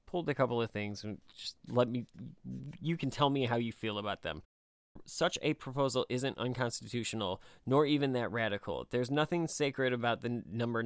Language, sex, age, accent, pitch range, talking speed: English, male, 30-49, American, 115-135 Hz, 180 wpm